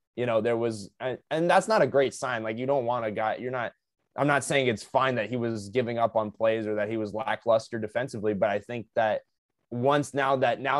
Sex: male